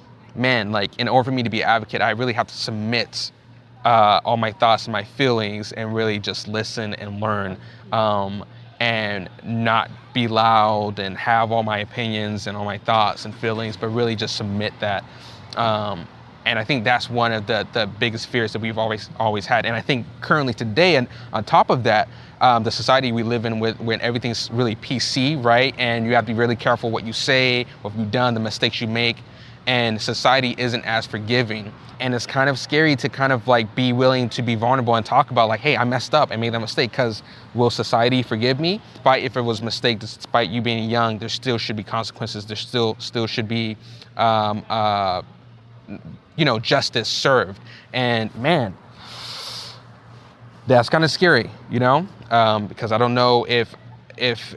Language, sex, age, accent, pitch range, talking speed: English, male, 20-39, American, 110-125 Hz, 200 wpm